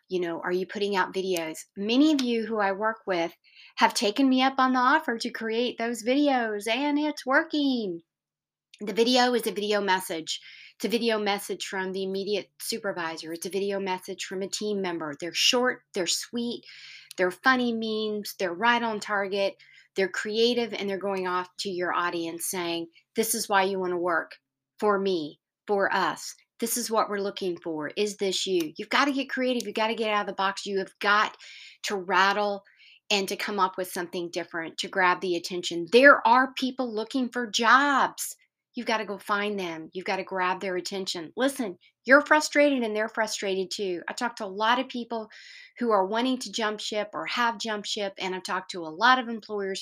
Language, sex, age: English, female, 40-59